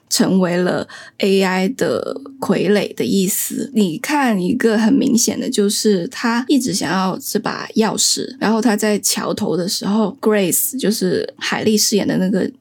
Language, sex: Chinese, female